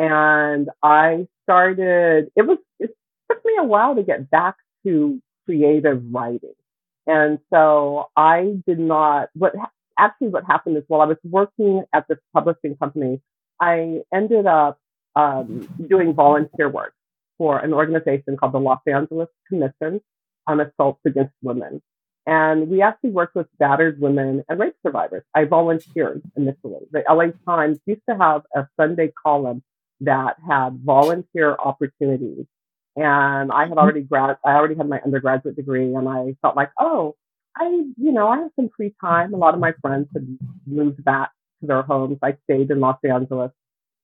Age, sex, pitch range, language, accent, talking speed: 40-59, female, 140-170 Hz, English, American, 160 wpm